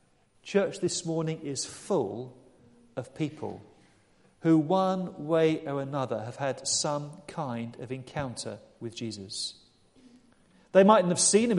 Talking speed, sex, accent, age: 130 wpm, male, British, 40-59